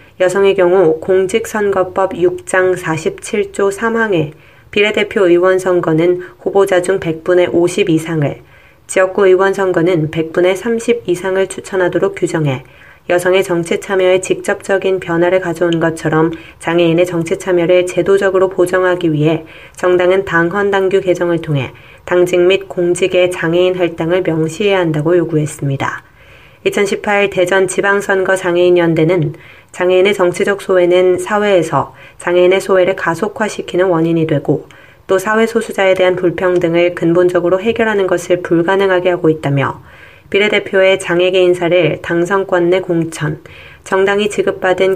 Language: Korean